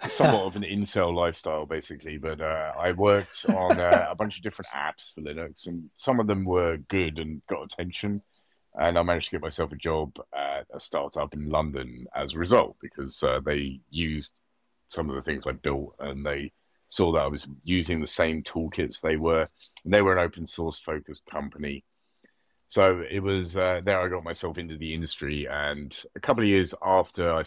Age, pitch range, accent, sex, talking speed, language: 30-49, 75-90 Hz, British, male, 200 wpm, English